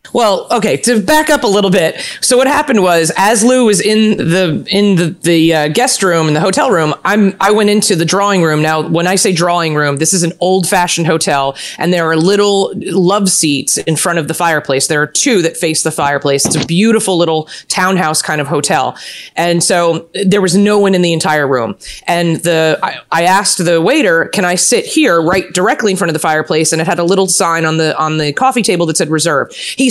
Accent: American